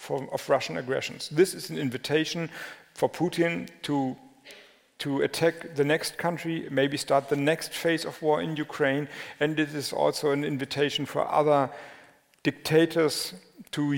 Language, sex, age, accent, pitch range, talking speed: Danish, male, 50-69, German, 145-170 Hz, 145 wpm